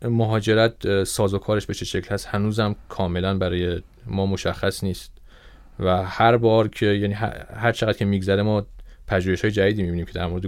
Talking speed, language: 160 wpm, Persian